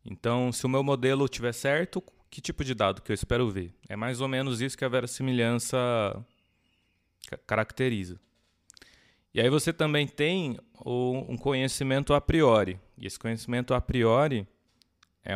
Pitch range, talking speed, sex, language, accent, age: 105-130 Hz, 150 wpm, male, Portuguese, Brazilian, 20-39